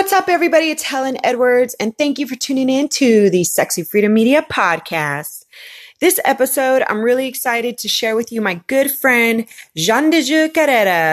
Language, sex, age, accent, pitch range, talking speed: English, female, 30-49, American, 205-285 Hz, 185 wpm